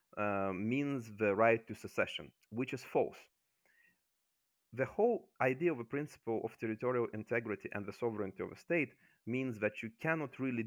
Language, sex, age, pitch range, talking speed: English, male, 30-49, 105-125 Hz, 165 wpm